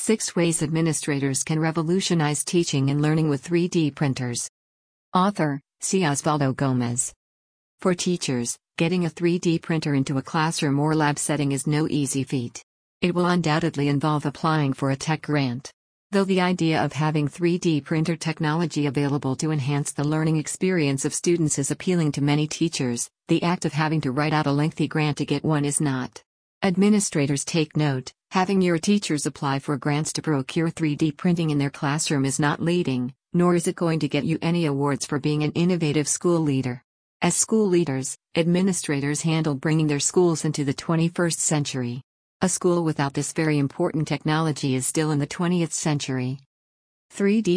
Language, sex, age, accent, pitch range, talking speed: English, female, 50-69, American, 140-165 Hz, 170 wpm